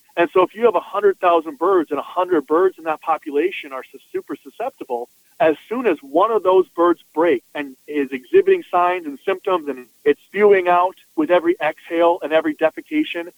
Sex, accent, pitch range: male, American, 150-200 Hz